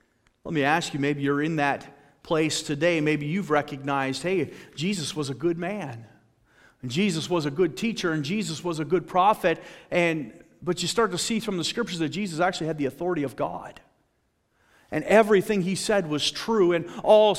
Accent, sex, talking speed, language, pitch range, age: American, male, 195 wpm, English, 145-195 Hz, 40-59